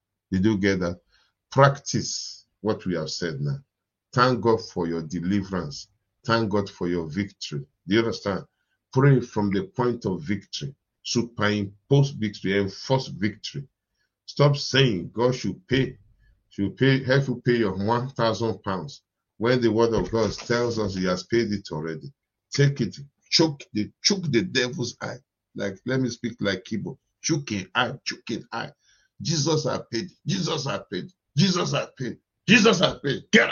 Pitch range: 100-135 Hz